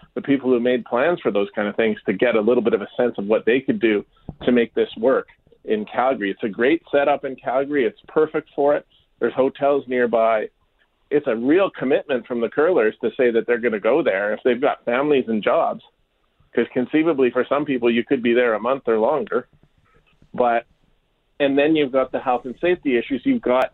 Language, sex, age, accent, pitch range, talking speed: English, male, 40-59, American, 120-145 Hz, 220 wpm